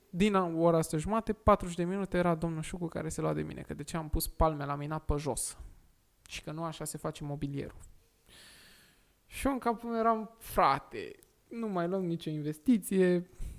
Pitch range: 165-260 Hz